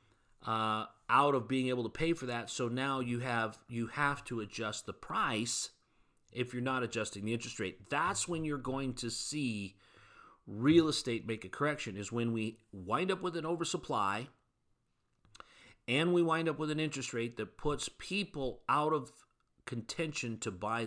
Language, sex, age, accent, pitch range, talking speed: English, male, 40-59, American, 110-150 Hz, 175 wpm